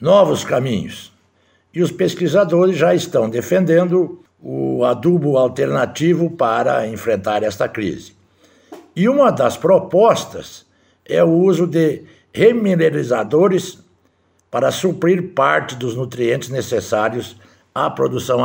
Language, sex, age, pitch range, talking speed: Portuguese, male, 60-79, 115-180 Hz, 105 wpm